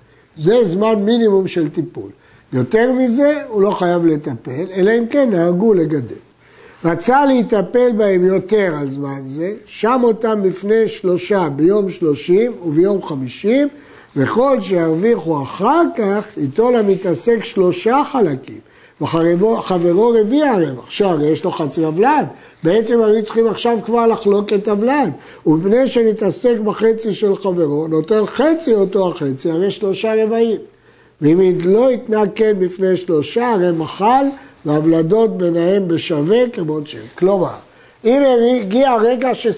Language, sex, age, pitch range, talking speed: Hebrew, male, 60-79, 165-230 Hz, 130 wpm